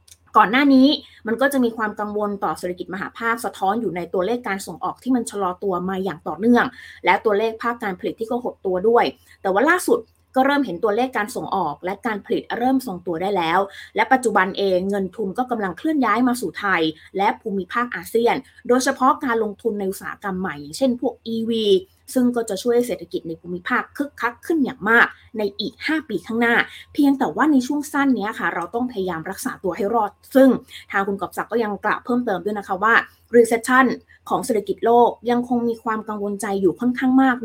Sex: female